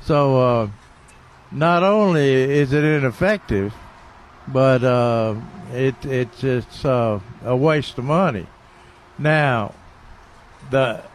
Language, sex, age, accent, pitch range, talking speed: English, male, 60-79, American, 120-150 Hz, 100 wpm